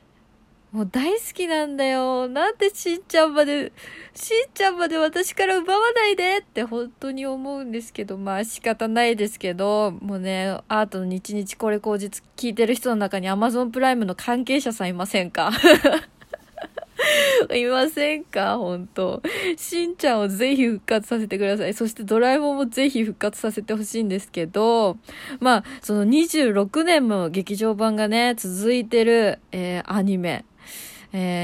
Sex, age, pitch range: female, 20-39, 195-270 Hz